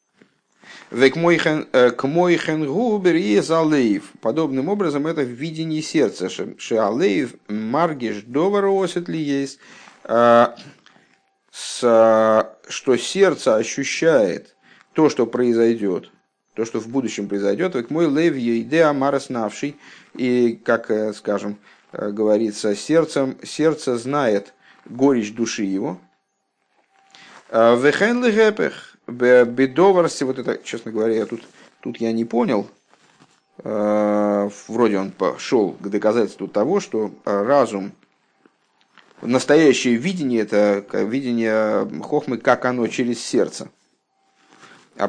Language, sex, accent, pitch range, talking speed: Russian, male, native, 110-155 Hz, 90 wpm